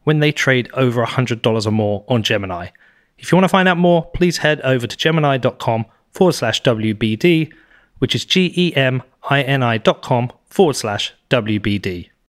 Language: English